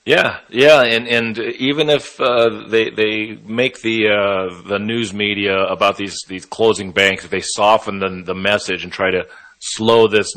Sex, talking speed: male, 180 wpm